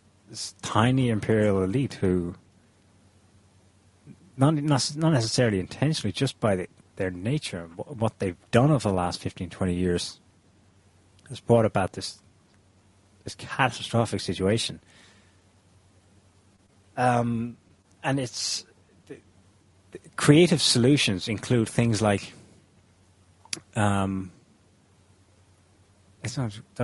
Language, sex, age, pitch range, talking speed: English, male, 30-49, 95-115 Hz, 95 wpm